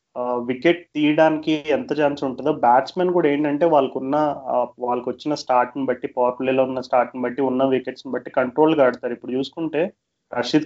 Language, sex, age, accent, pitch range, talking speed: Telugu, male, 20-39, native, 125-150 Hz, 150 wpm